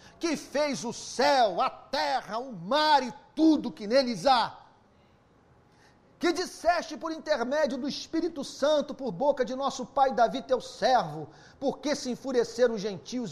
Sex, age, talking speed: male, 40-59, 150 wpm